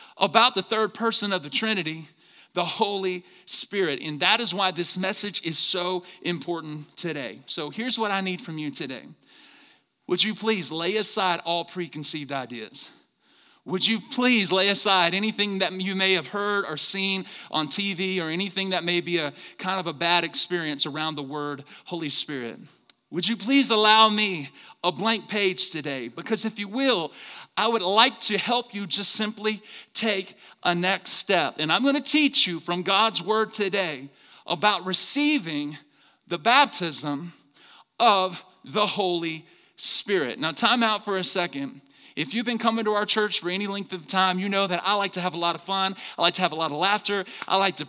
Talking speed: 190 wpm